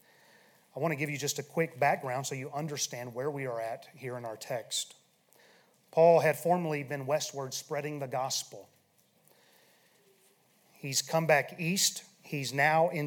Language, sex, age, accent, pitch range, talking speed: English, male, 30-49, American, 140-180 Hz, 160 wpm